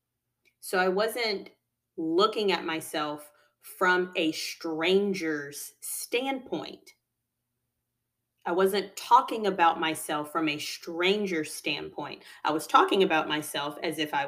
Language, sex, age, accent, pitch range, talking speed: English, female, 30-49, American, 165-220 Hz, 115 wpm